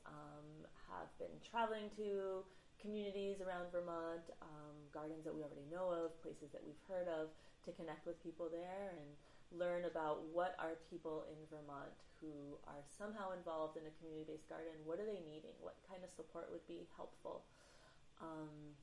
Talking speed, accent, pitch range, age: 170 wpm, American, 150-175 Hz, 30-49